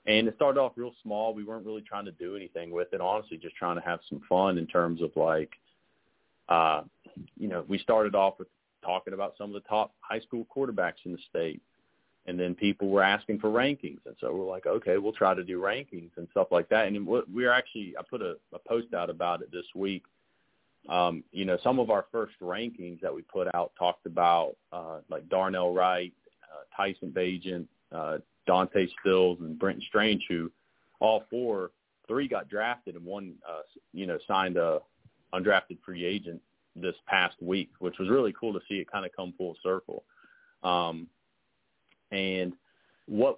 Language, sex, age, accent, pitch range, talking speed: English, male, 30-49, American, 90-110 Hz, 195 wpm